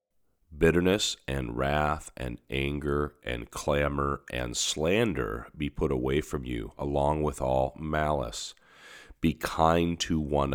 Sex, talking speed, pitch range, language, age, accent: male, 125 wpm, 70-85 Hz, English, 40-59, American